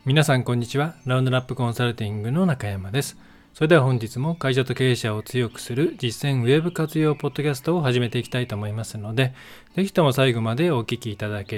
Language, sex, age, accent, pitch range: Japanese, male, 20-39, native, 105-130 Hz